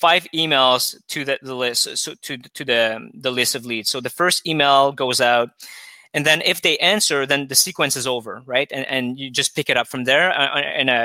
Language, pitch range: English, 125-155 Hz